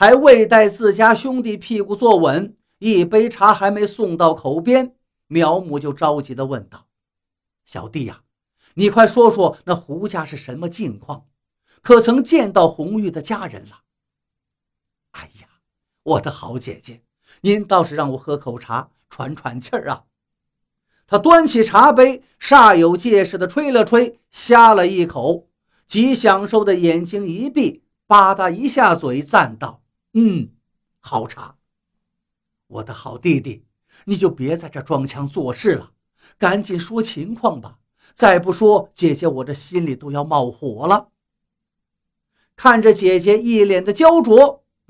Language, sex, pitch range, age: Chinese, male, 135-215 Hz, 50-69